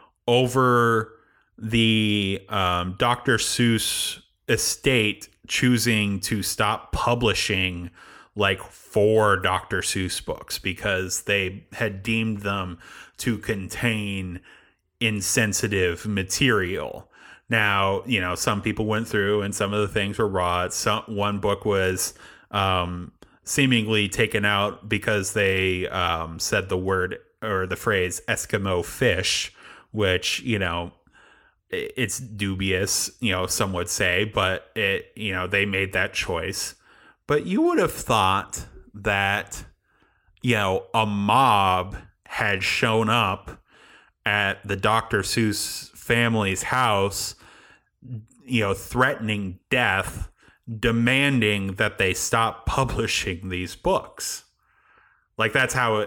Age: 30-49